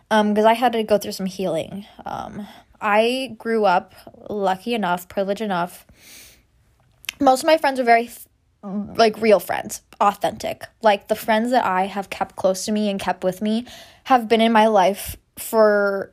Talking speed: 175 wpm